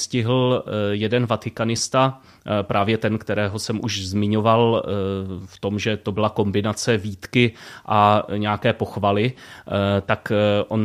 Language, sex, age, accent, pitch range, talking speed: Czech, male, 30-49, native, 105-120 Hz, 115 wpm